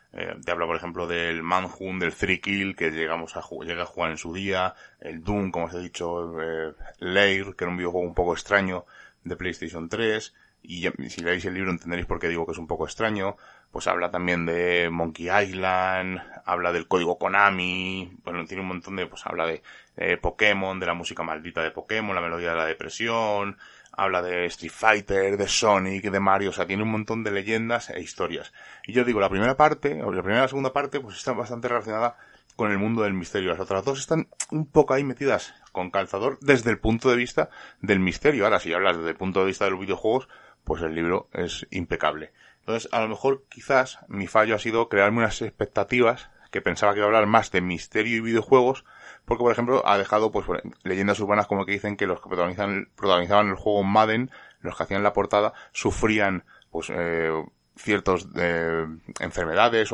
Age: 20-39